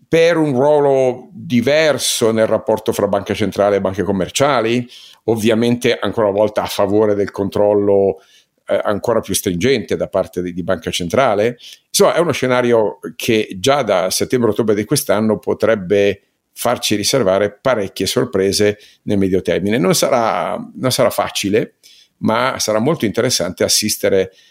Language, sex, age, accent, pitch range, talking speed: Italian, male, 50-69, native, 100-125 Hz, 140 wpm